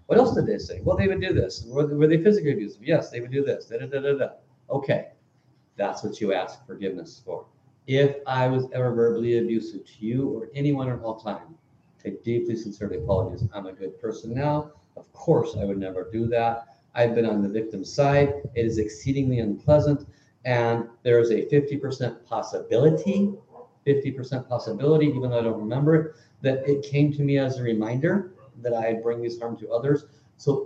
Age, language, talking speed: 50-69, English, 200 wpm